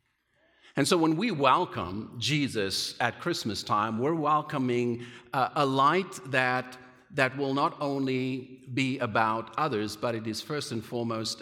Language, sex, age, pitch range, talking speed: English, male, 50-69, 110-140 Hz, 145 wpm